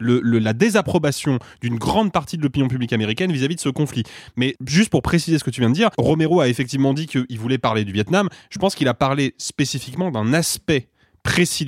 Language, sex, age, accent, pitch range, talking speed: French, male, 20-39, French, 125-160 Hz, 220 wpm